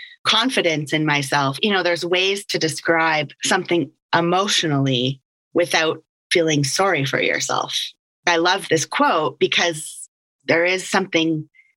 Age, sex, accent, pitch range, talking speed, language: 30-49, female, American, 150-185 Hz, 120 wpm, English